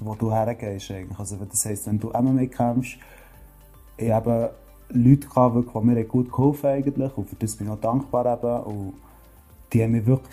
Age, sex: 30-49, male